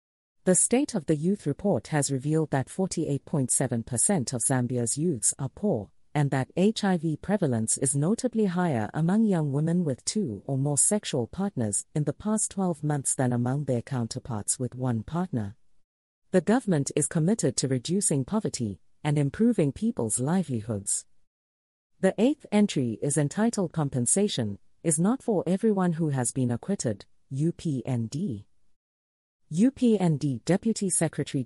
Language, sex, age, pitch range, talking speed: English, female, 40-59, 120-185 Hz, 135 wpm